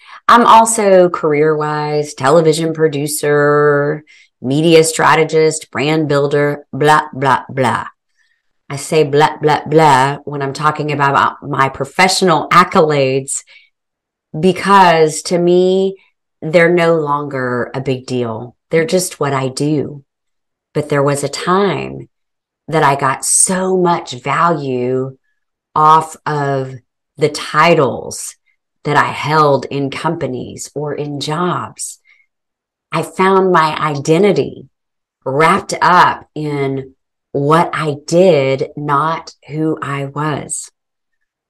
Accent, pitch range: American, 145-180 Hz